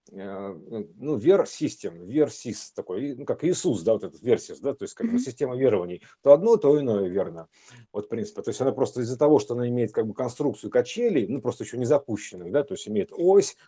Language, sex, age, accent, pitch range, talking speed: Russian, male, 50-69, native, 120-195 Hz, 215 wpm